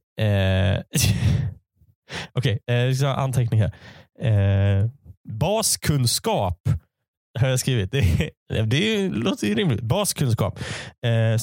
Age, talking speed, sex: 20-39, 95 wpm, male